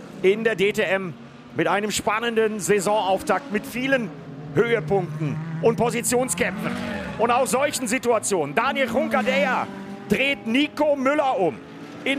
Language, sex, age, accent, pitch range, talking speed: German, male, 50-69, German, 195-245 Hz, 115 wpm